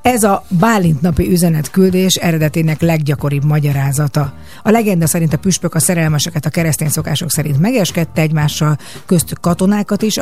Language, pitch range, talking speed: Hungarian, 150-180 Hz, 140 wpm